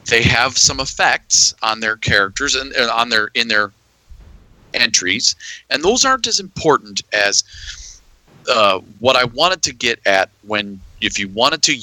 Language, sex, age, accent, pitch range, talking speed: English, male, 40-59, American, 85-110 Hz, 160 wpm